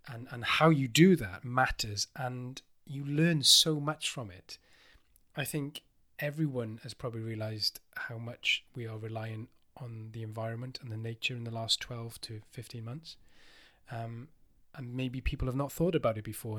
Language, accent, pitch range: English, British, 115-145 Hz